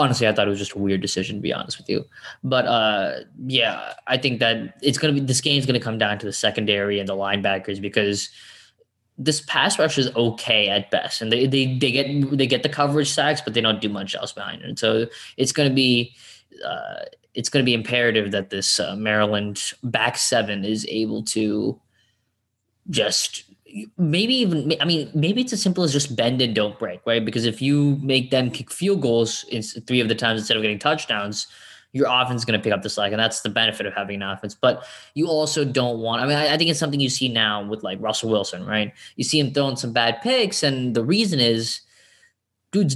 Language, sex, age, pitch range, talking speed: English, male, 20-39, 105-140 Hz, 225 wpm